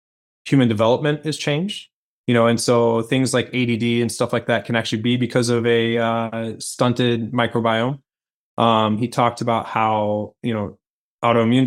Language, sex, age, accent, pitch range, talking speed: English, male, 20-39, American, 115-125 Hz, 165 wpm